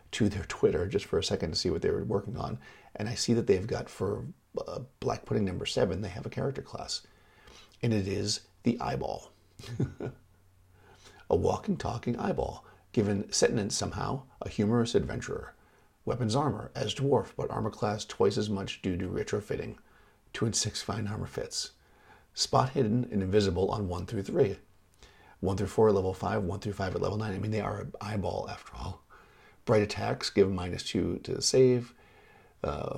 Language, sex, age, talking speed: English, male, 50-69, 185 wpm